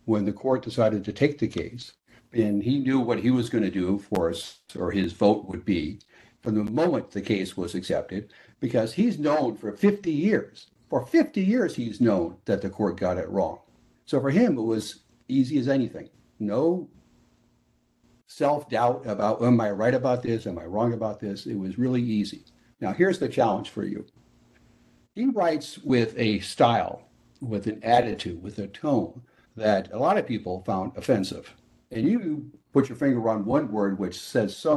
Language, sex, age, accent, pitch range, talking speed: English, male, 60-79, American, 100-125 Hz, 190 wpm